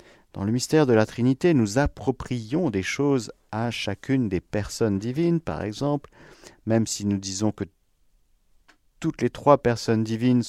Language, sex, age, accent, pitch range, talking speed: French, male, 50-69, French, 95-125 Hz, 155 wpm